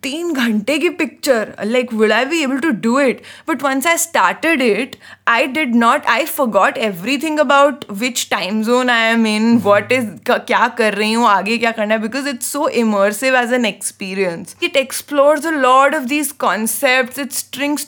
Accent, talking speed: Indian, 155 wpm